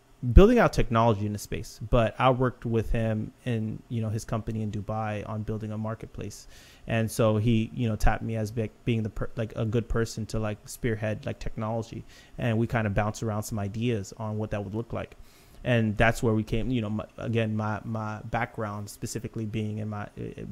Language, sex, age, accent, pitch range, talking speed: English, male, 30-49, American, 110-120 Hz, 215 wpm